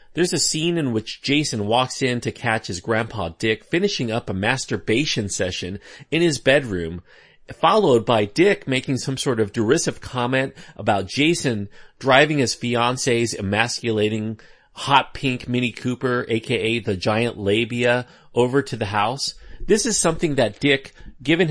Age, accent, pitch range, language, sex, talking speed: 40-59, American, 110-145 Hz, English, male, 150 wpm